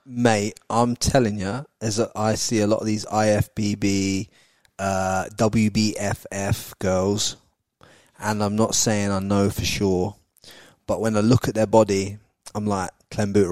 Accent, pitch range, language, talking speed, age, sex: British, 100-115 Hz, English, 150 wpm, 20-39, male